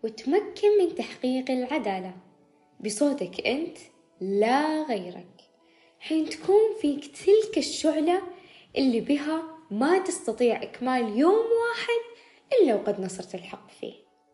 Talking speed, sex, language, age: 105 wpm, female, Arabic, 20-39